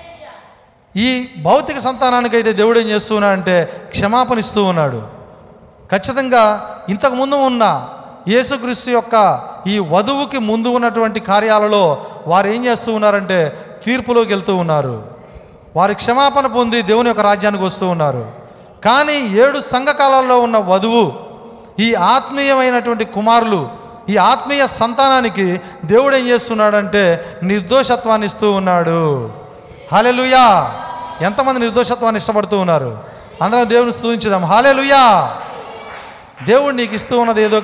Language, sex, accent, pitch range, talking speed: Telugu, male, native, 195-245 Hz, 110 wpm